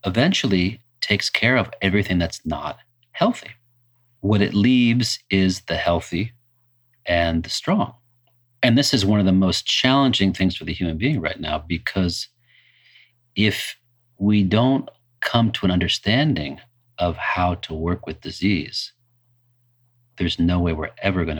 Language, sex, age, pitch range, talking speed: English, male, 40-59, 90-120 Hz, 145 wpm